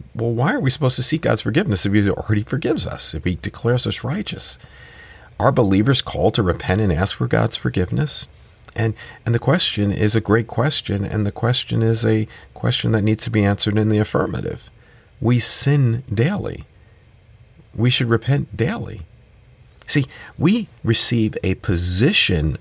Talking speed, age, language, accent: 165 wpm, 50-69, English, American